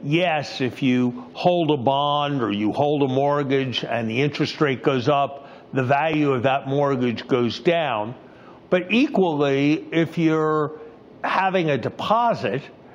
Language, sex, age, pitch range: English, male, 50-69, 135-165 Hz